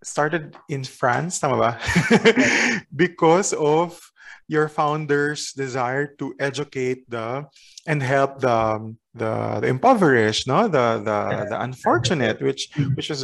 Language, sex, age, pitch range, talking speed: Filipino, male, 20-39, 120-145 Hz, 120 wpm